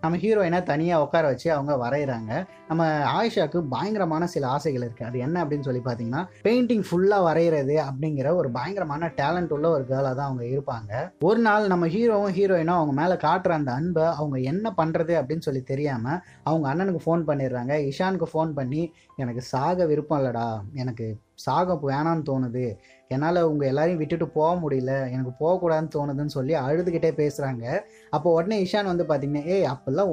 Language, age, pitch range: Tamil, 20-39, 135-175 Hz